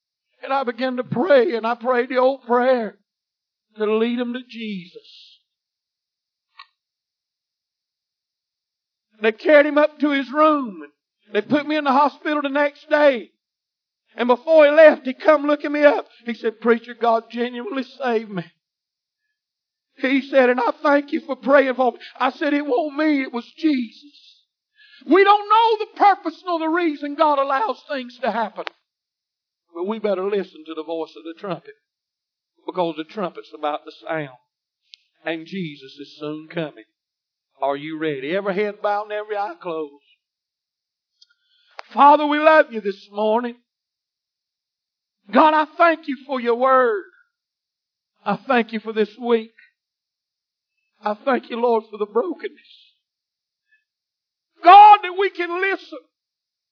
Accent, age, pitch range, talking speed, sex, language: American, 50-69, 210-300 Hz, 150 wpm, male, English